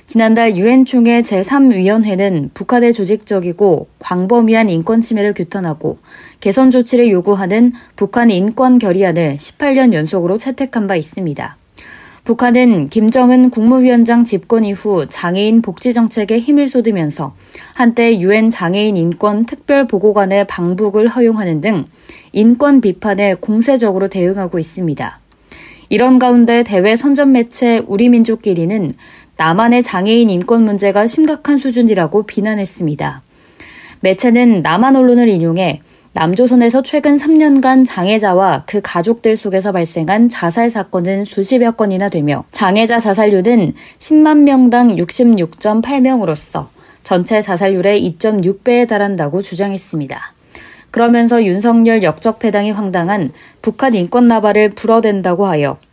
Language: Korean